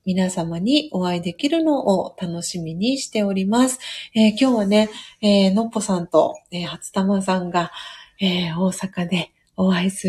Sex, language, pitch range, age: female, Japanese, 195-245 Hz, 30-49